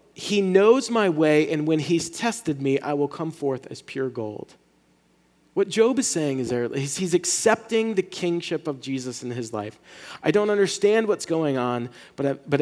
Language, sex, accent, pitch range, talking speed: English, male, American, 115-170 Hz, 180 wpm